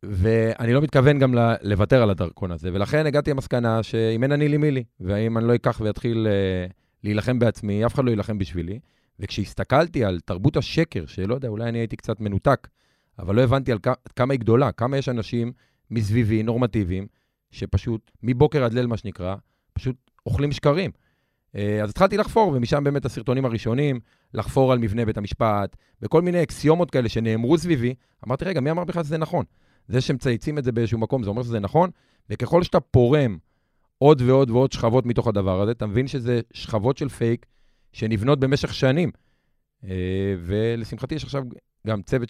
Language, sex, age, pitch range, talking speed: Hebrew, male, 30-49, 105-130 Hz, 155 wpm